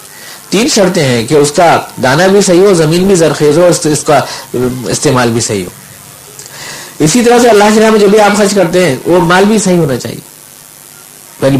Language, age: Urdu, 50-69